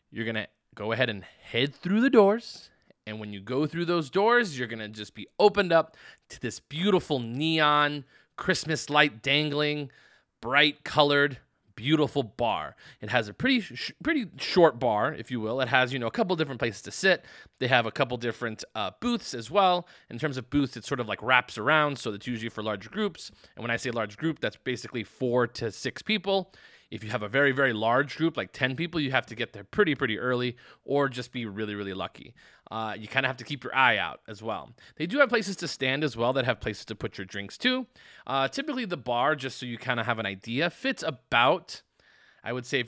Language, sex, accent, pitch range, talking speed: English, male, American, 115-170 Hz, 225 wpm